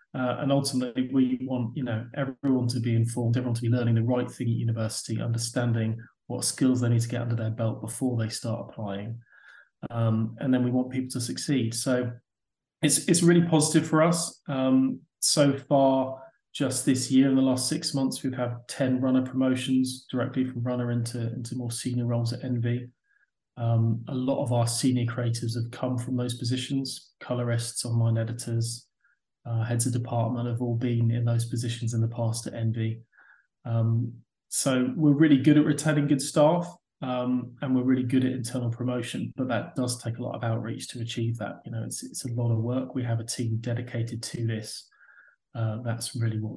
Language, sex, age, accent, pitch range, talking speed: English, male, 30-49, British, 115-130 Hz, 195 wpm